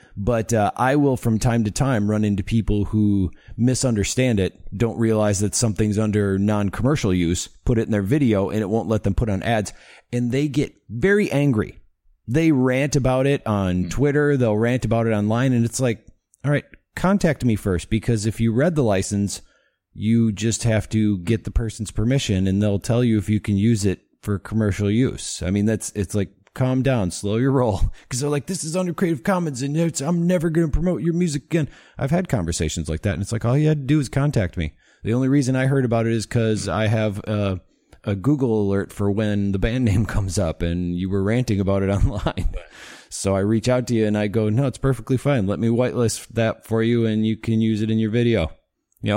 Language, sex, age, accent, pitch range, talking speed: English, male, 30-49, American, 100-130 Hz, 225 wpm